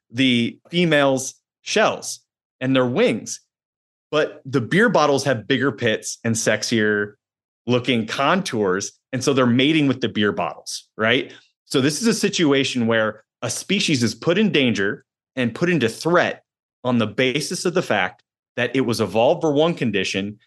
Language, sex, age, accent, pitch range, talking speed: English, male, 30-49, American, 115-150 Hz, 160 wpm